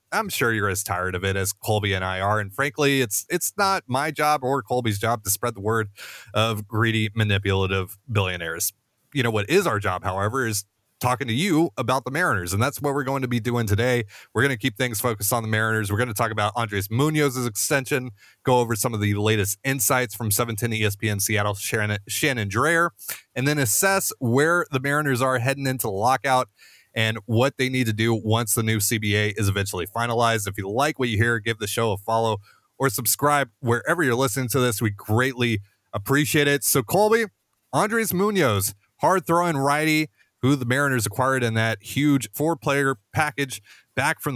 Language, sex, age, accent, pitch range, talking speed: English, male, 30-49, American, 105-135 Hz, 200 wpm